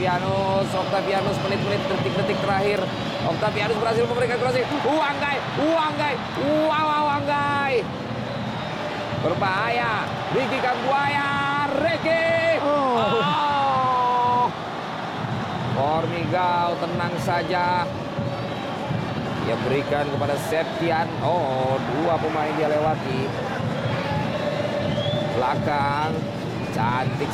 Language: Indonesian